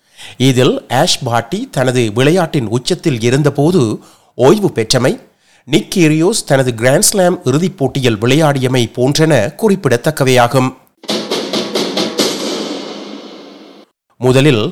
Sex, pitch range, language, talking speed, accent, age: male, 130-165 Hz, Tamil, 75 wpm, native, 30-49